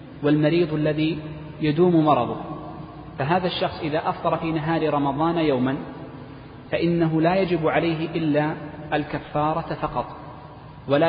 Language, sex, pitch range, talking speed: Arabic, male, 140-160 Hz, 110 wpm